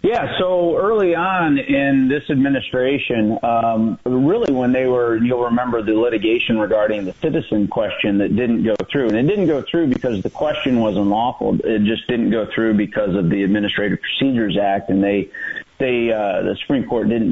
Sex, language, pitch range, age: male, English, 100-120 Hz, 40-59